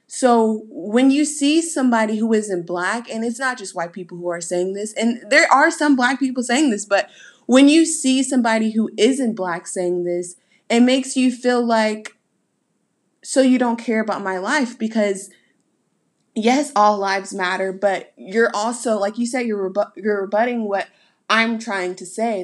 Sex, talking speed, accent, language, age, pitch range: female, 180 wpm, American, English, 20-39, 190-250 Hz